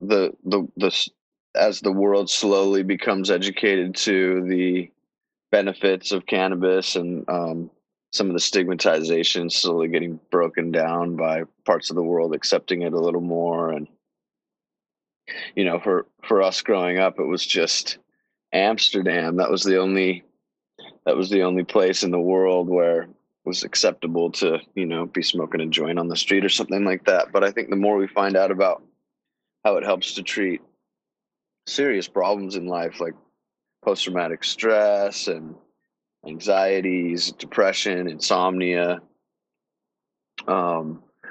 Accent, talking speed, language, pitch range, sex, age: American, 150 wpm, English, 85-95 Hz, male, 20-39